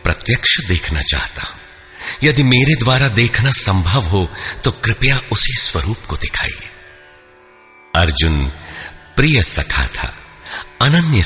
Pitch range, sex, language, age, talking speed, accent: 85-130 Hz, male, Hindi, 50-69, 110 wpm, native